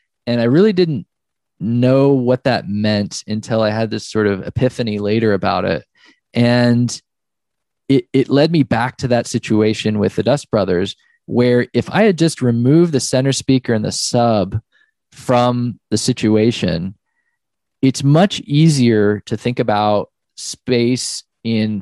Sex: male